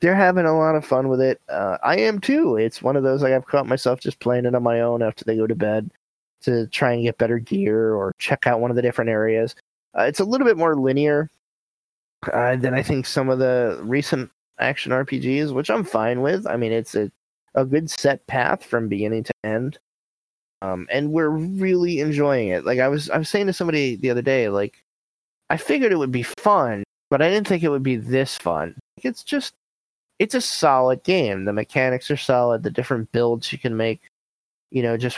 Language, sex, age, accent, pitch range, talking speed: English, male, 20-39, American, 115-145 Hz, 225 wpm